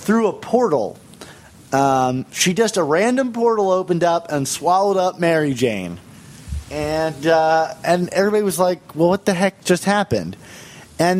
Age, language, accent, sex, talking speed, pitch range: 30-49, English, American, male, 155 wpm, 155-205 Hz